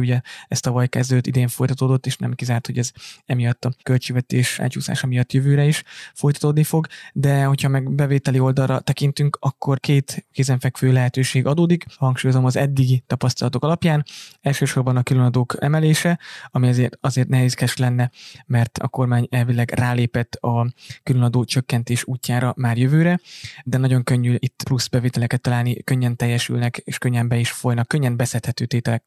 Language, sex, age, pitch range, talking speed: Hungarian, male, 20-39, 125-135 Hz, 150 wpm